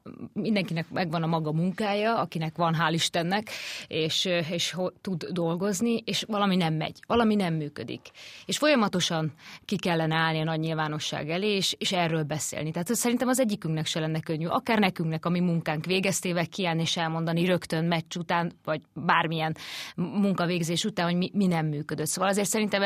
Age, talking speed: 30-49, 170 wpm